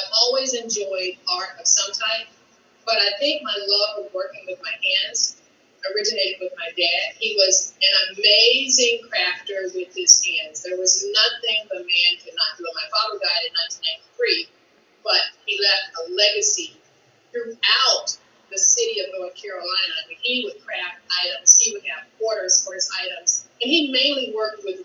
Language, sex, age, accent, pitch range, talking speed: English, female, 30-49, American, 190-310 Hz, 165 wpm